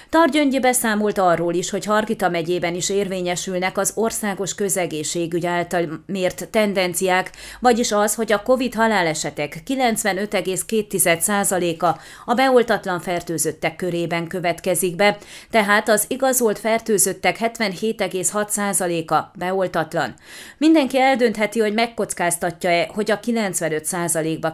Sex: female